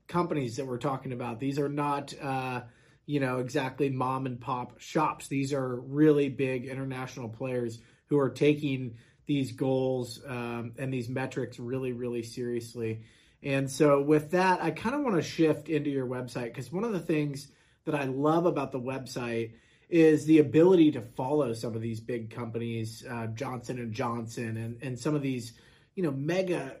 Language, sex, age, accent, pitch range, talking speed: English, male, 30-49, American, 120-150 Hz, 180 wpm